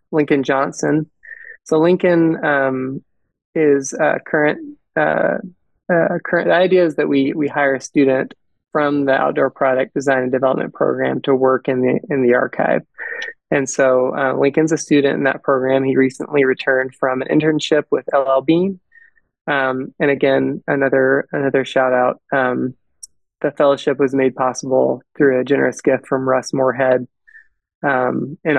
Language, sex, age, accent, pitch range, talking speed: English, male, 20-39, American, 130-150 Hz, 155 wpm